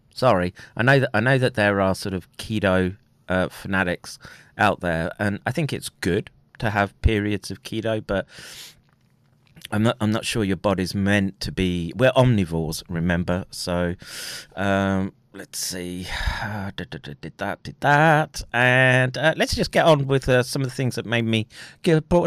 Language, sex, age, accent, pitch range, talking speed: English, male, 30-49, British, 100-140 Hz, 175 wpm